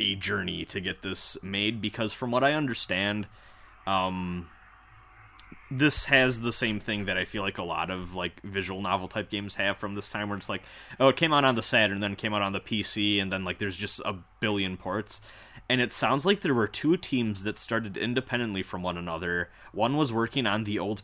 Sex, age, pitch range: male, 20-39, 95-115 Hz